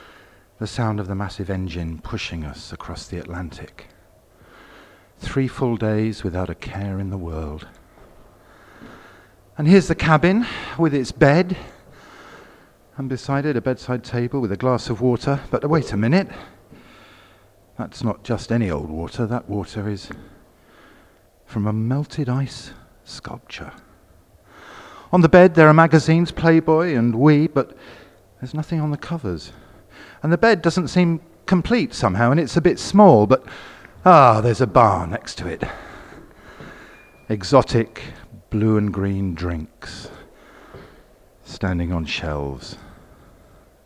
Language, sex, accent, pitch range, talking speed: English, male, British, 95-140 Hz, 135 wpm